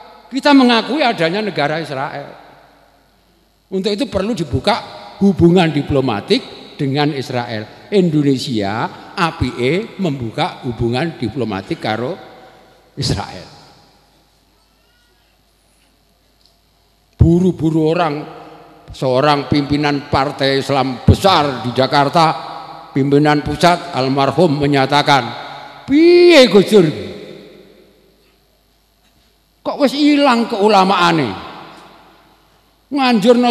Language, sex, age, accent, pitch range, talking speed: Indonesian, male, 50-69, native, 140-215 Hz, 75 wpm